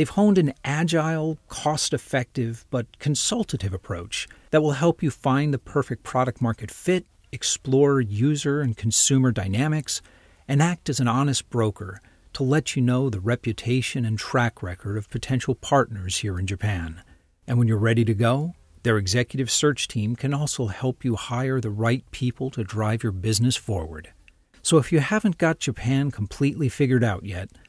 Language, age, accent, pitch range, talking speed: English, 40-59, American, 95-135 Hz, 165 wpm